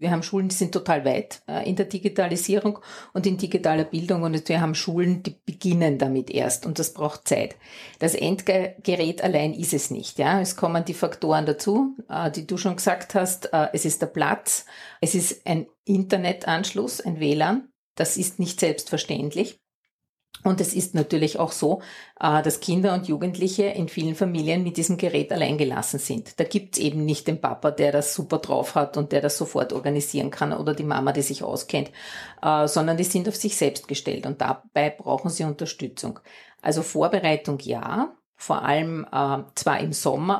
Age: 50-69